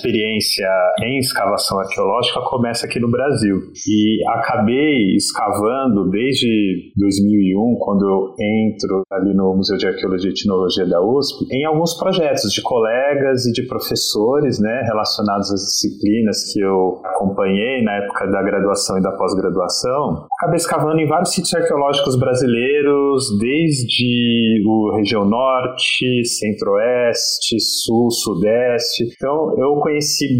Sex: male